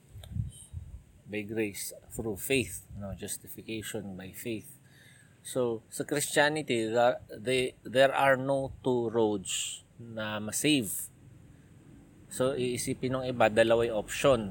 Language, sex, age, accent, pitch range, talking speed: Filipino, male, 20-39, native, 105-130 Hz, 100 wpm